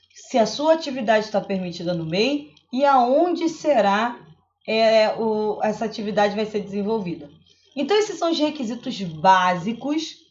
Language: Portuguese